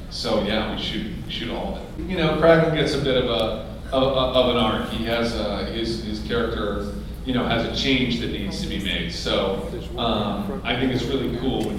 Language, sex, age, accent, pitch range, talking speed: English, male, 40-59, American, 100-140 Hz, 225 wpm